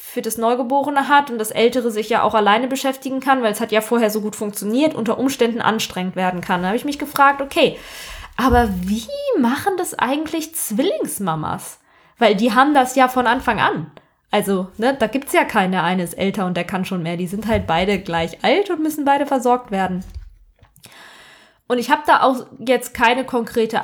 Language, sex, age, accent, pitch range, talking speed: German, female, 20-39, German, 210-255 Hz, 200 wpm